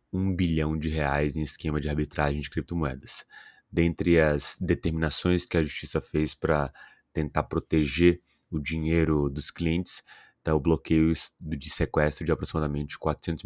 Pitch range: 75-85 Hz